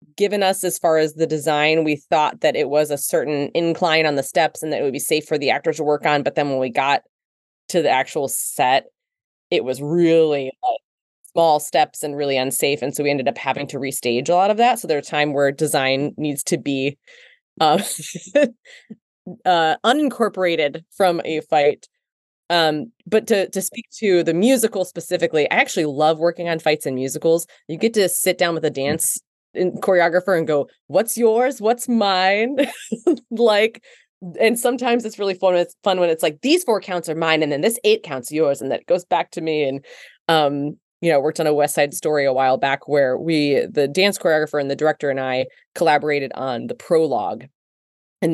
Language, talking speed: English, 205 wpm